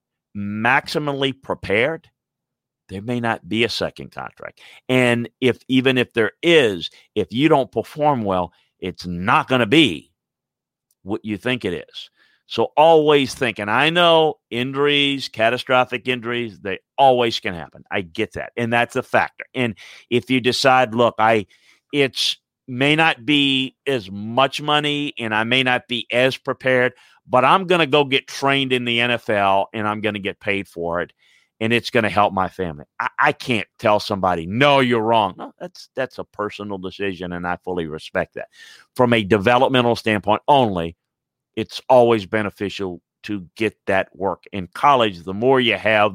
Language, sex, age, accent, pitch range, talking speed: English, male, 50-69, American, 100-130 Hz, 170 wpm